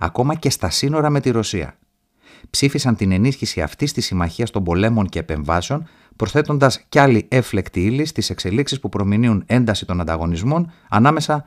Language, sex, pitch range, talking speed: Greek, male, 95-140 Hz, 155 wpm